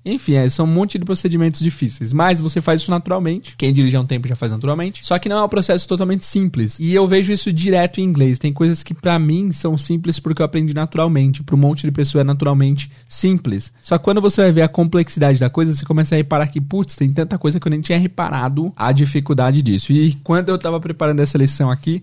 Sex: male